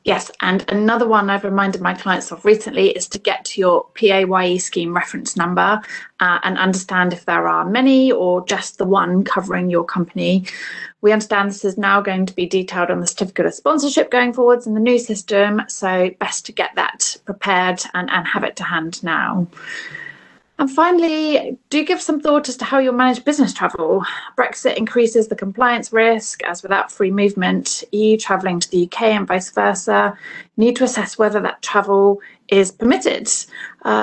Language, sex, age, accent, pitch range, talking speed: English, female, 30-49, British, 190-245 Hz, 185 wpm